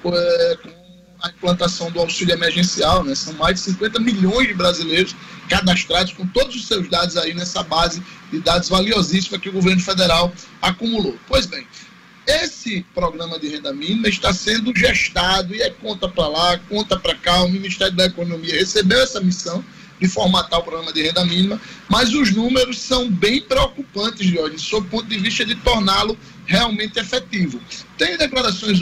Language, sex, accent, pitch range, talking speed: Portuguese, male, Brazilian, 175-225 Hz, 170 wpm